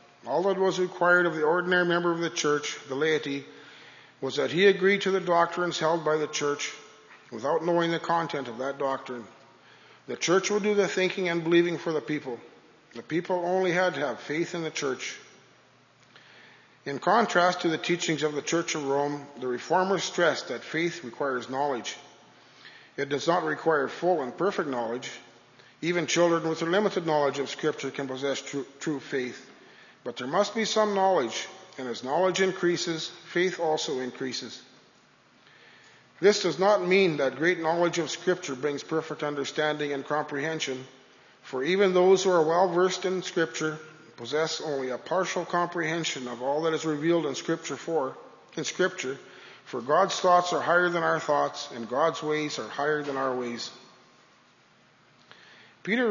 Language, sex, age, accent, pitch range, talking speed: English, male, 50-69, American, 140-180 Hz, 165 wpm